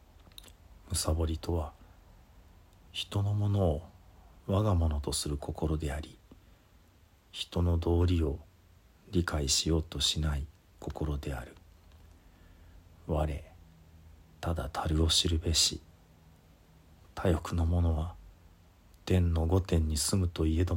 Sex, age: male, 40-59